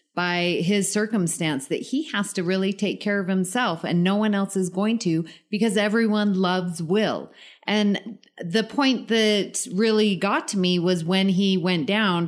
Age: 30-49